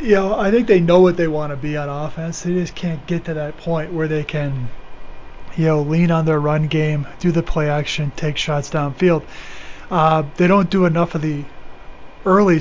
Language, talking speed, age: English, 220 wpm, 30-49